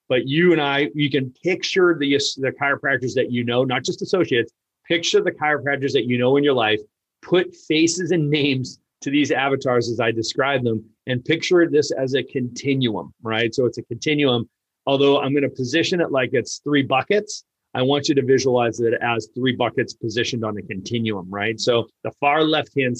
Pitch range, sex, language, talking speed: 120-150 Hz, male, English, 195 wpm